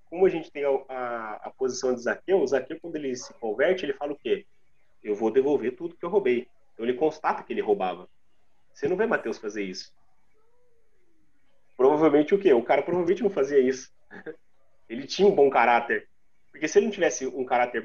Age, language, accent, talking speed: 30-49, Portuguese, Brazilian, 200 wpm